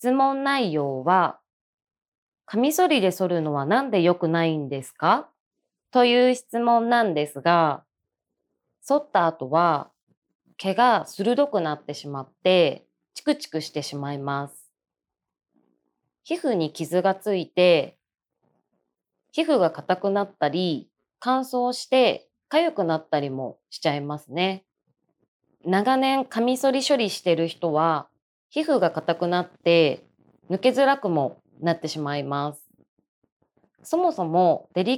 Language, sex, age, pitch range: Japanese, female, 20-39, 155-245 Hz